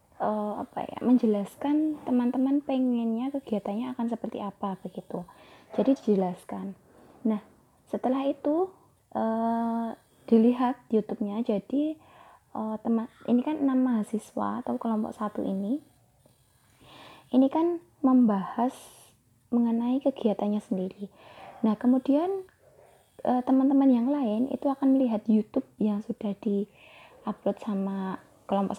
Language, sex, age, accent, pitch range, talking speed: Indonesian, female, 20-39, native, 210-260 Hz, 110 wpm